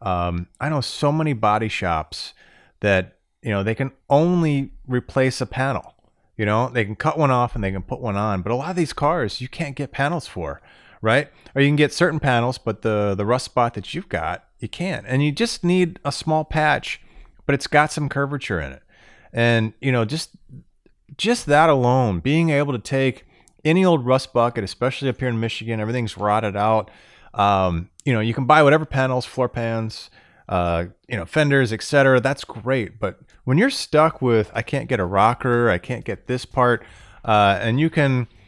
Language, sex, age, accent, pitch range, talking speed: English, male, 30-49, American, 105-140 Hz, 205 wpm